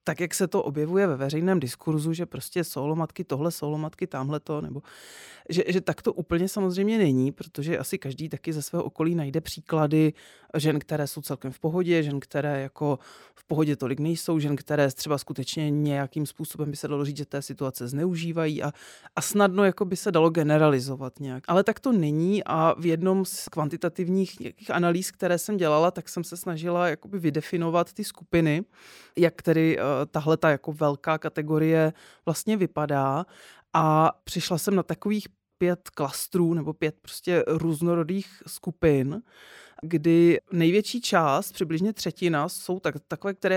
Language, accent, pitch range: Czech, native, 150-190 Hz